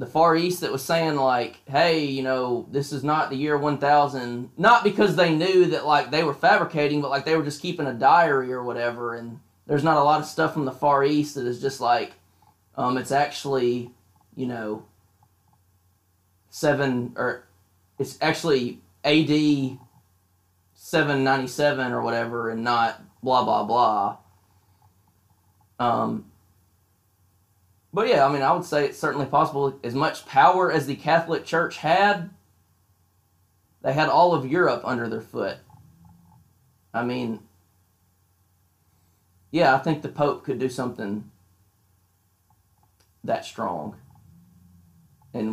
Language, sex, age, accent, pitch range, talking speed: English, male, 20-39, American, 95-145 Hz, 140 wpm